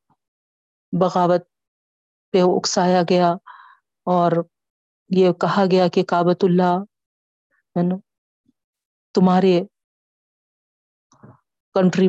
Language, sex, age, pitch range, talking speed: Urdu, female, 40-59, 180-195 Hz, 70 wpm